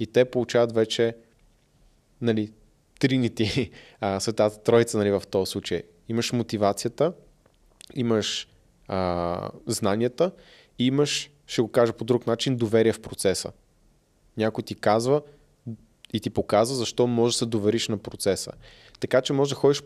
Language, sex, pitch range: Bulgarian, male, 110-125 Hz